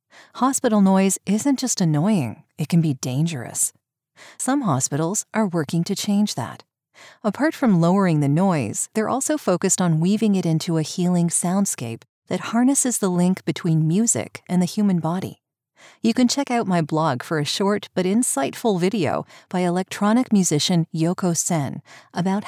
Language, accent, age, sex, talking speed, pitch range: English, American, 40-59, female, 160 wpm, 160-215 Hz